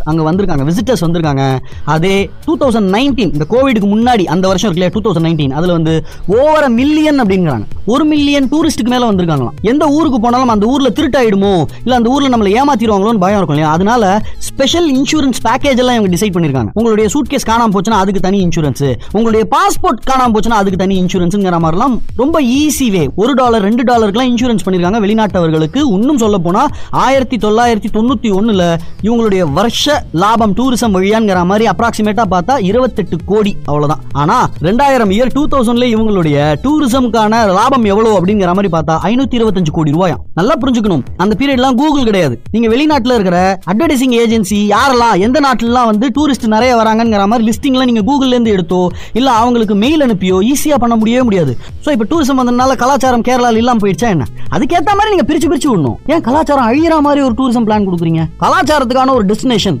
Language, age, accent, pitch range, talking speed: Tamil, 20-39, native, 185-260 Hz, 75 wpm